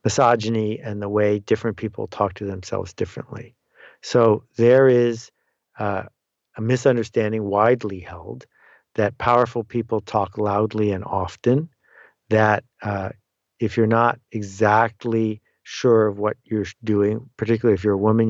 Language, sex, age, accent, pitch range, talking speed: English, male, 50-69, American, 105-125 Hz, 135 wpm